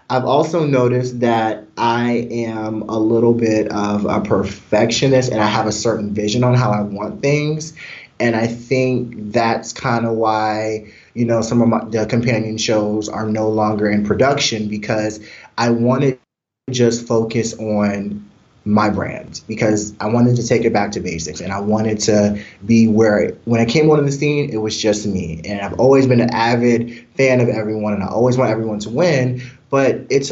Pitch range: 105-125 Hz